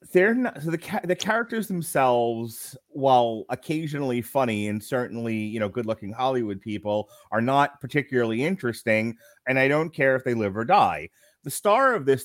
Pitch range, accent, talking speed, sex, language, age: 115-175 Hz, American, 165 wpm, male, English, 30-49